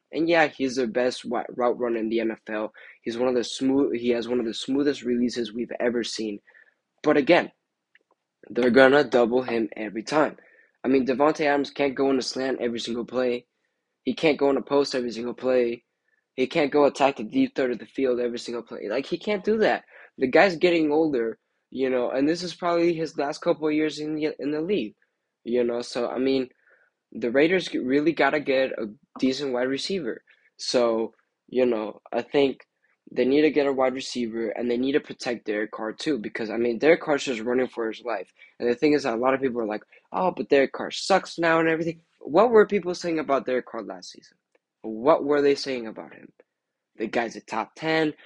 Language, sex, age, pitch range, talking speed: English, male, 10-29, 120-150 Hz, 220 wpm